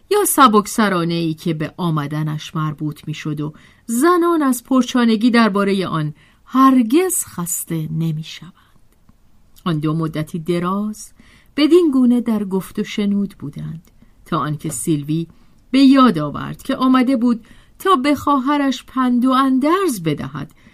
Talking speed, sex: 125 wpm, female